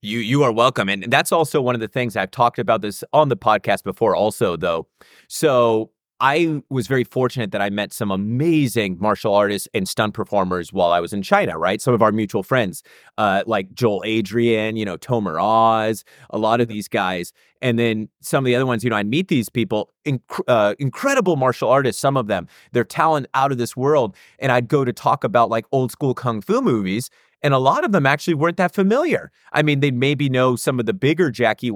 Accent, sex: American, male